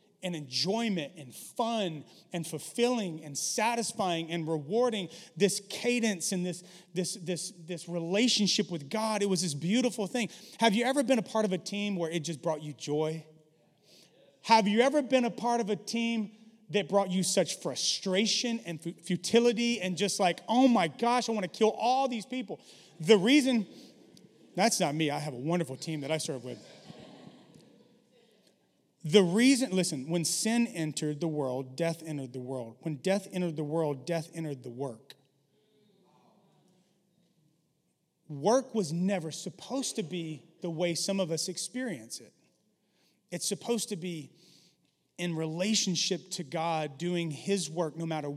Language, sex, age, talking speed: English, male, 30-49, 160 wpm